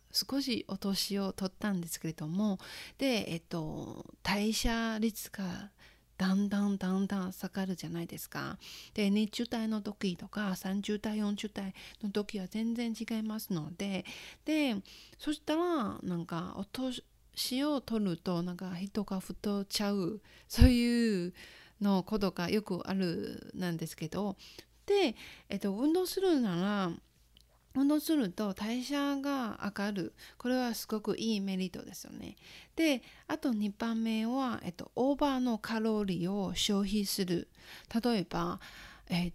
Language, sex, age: Japanese, female, 40-59